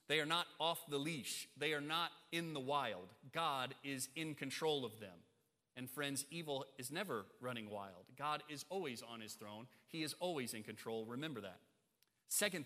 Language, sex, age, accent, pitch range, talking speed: English, male, 30-49, American, 140-185 Hz, 185 wpm